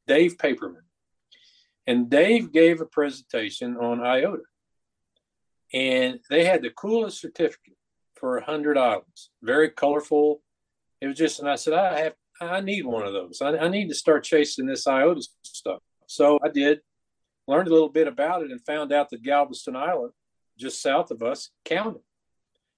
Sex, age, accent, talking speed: male, 50-69, American, 165 wpm